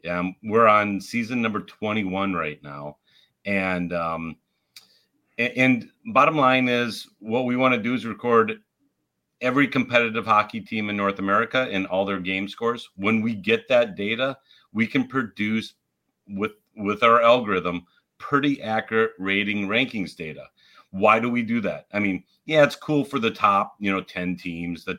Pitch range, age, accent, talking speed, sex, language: 95-125 Hz, 40-59, American, 165 wpm, male, English